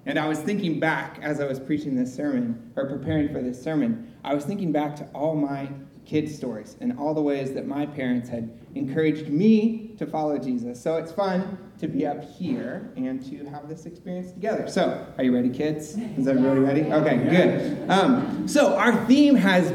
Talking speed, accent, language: 200 wpm, American, English